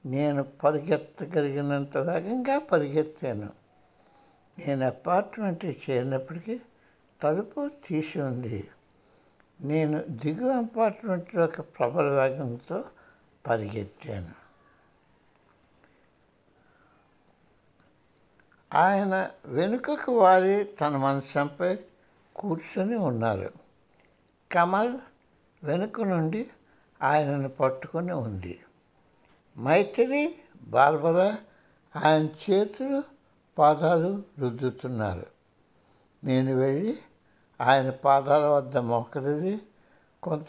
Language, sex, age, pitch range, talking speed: Hindi, male, 60-79, 135-190 Hz, 45 wpm